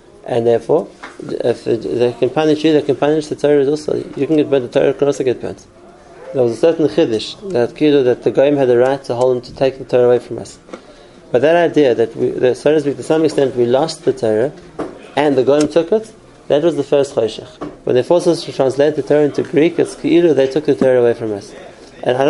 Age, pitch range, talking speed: 30-49, 125-155 Hz, 235 wpm